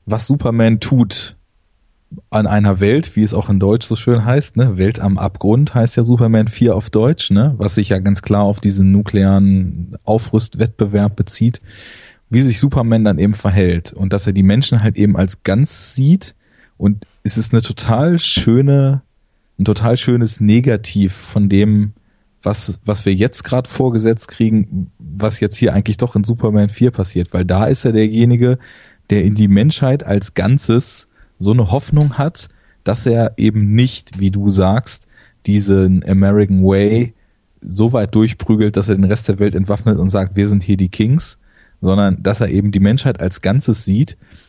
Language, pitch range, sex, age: German, 100-115 Hz, male, 20-39